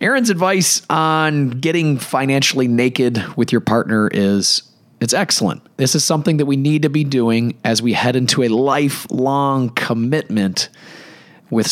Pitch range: 110-140 Hz